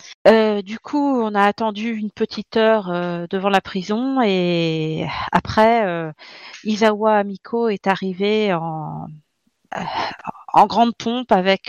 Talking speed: 135 wpm